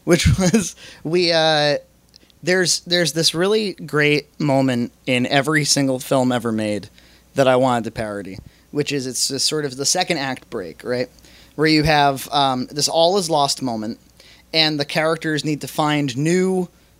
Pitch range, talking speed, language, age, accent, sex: 135-165 Hz, 165 wpm, English, 20-39, American, male